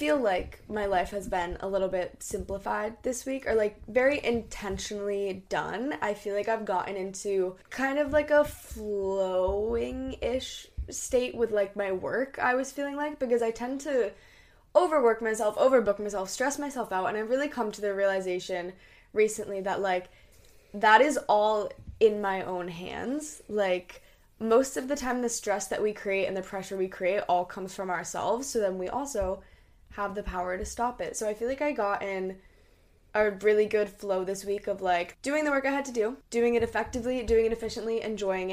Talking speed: 190 wpm